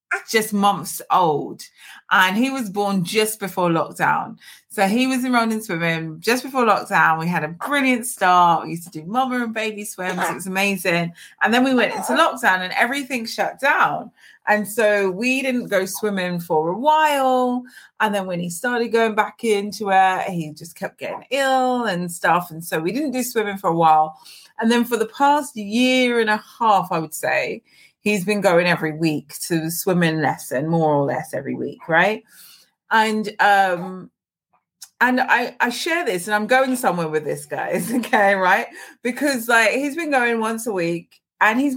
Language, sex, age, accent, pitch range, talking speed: English, female, 30-49, British, 180-250 Hz, 190 wpm